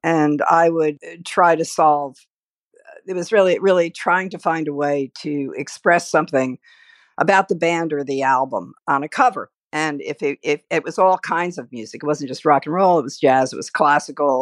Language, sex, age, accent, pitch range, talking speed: English, female, 50-69, American, 135-175 Hz, 205 wpm